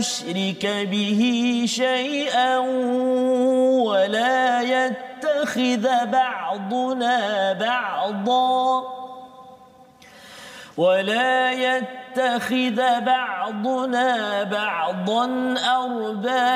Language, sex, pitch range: Malayalam, male, 235-255 Hz